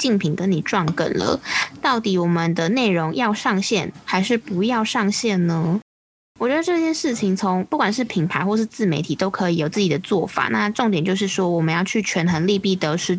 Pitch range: 180-225 Hz